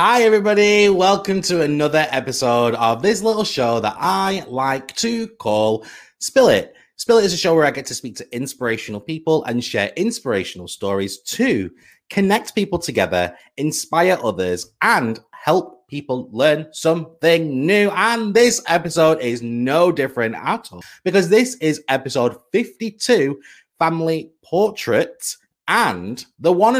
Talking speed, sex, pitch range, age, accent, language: 145 wpm, male, 115-185 Hz, 30-49, British, English